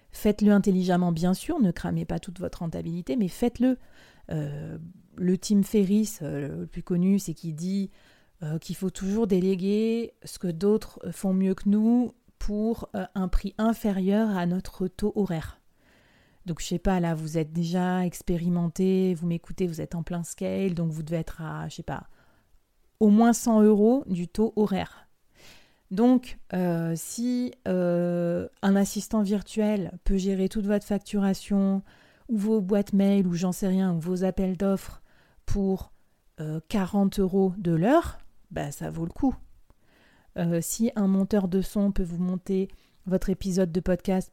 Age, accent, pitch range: 30-49, French, 175-210 Hz